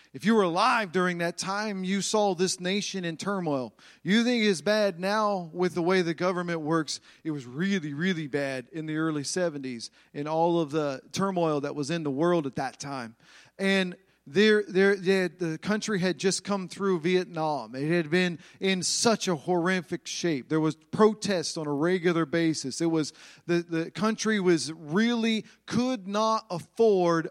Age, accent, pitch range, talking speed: 40-59, American, 160-200 Hz, 180 wpm